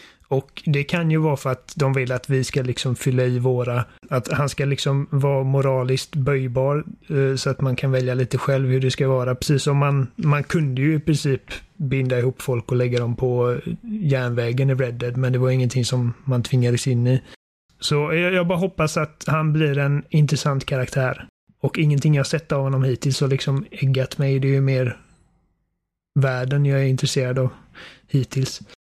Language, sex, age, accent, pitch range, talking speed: Swedish, male, 30-49, native, 130-150 Hz, 185 wpm